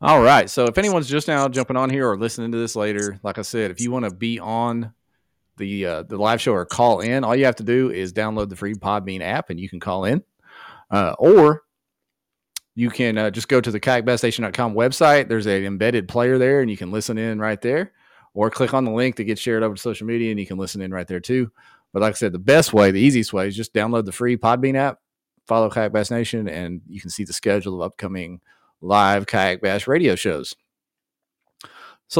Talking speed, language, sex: 235 wpm, English, male